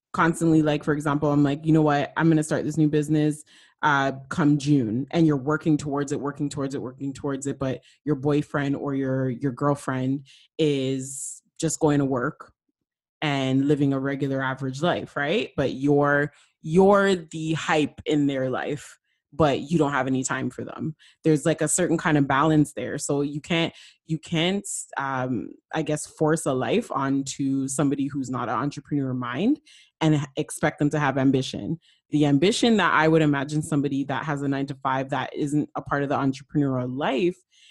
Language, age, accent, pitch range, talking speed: English, 20-39, American, 135-155 Hz, 185 wpm